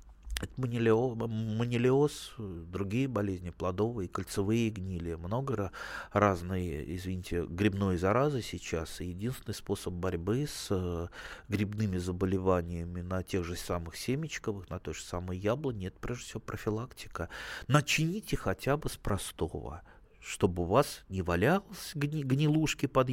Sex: male